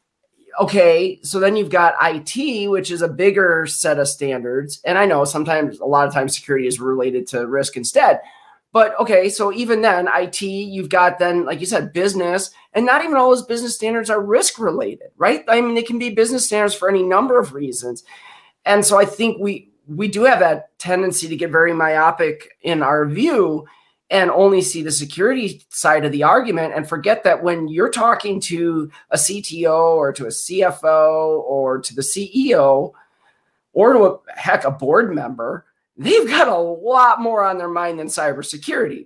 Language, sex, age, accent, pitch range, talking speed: English, male, 30-49, American, 155-205 Hz, 185 wpm